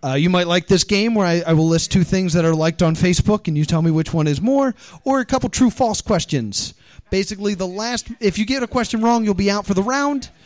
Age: 30-49